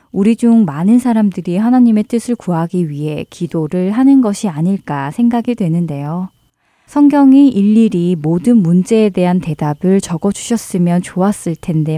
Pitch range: 170-235 Hz